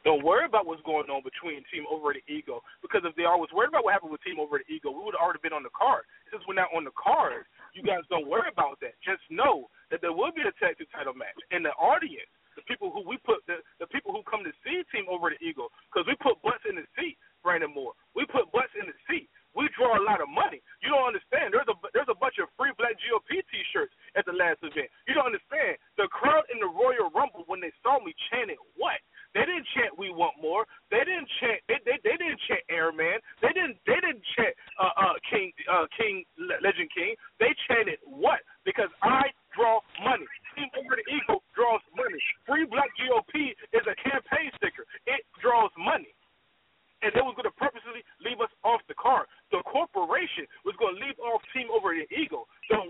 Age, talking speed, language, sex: 30-49, 225 wpm, English, male